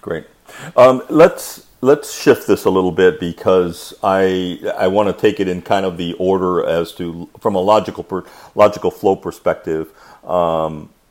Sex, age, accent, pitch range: male, 50-69, American, 85-105 Hz